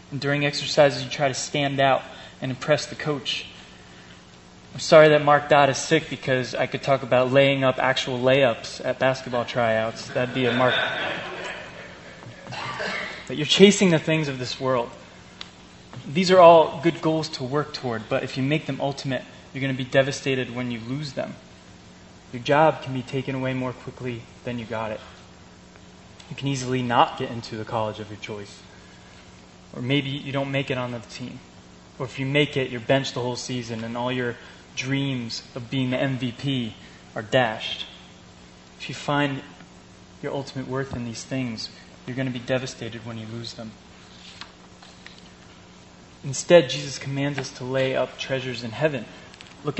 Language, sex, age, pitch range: English, male, 20-39, 90-140 Hz